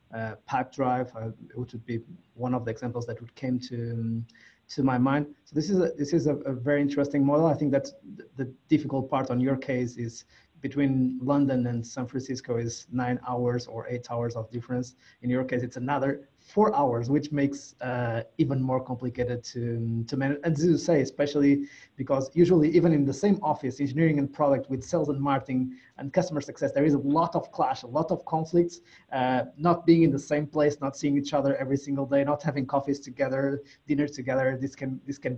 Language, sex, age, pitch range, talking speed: English, male, 30-49, 125-145 Hz, 205 wpm